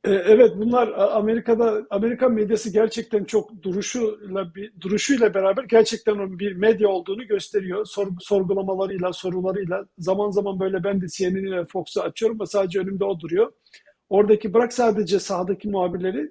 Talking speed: 140 wpm